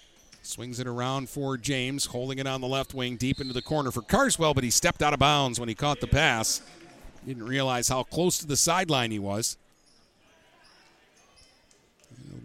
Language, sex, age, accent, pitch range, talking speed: English, male, 50-69, American, 125-145 Hz, 185 wpm